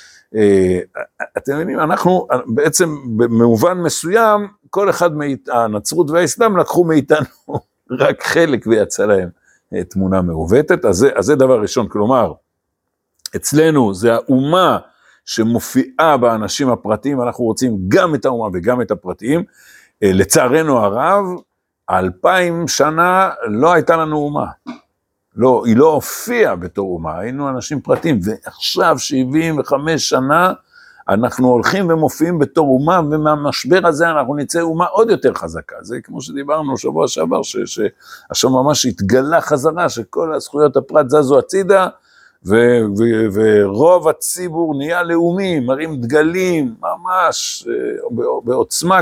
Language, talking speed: Hebrew, 120 wpm